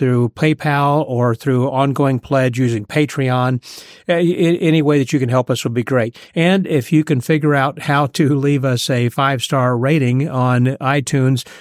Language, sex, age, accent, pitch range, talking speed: English, male, 50-69, American, 125-145 Hz, 175 wpm